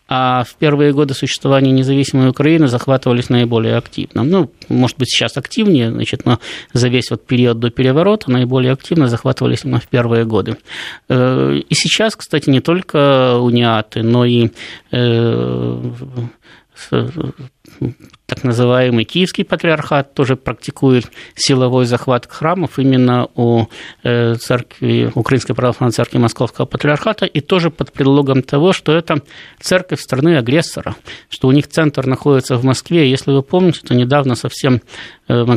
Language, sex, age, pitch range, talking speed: Russian, male, 20-39, 120-145 Hz, 130 wpm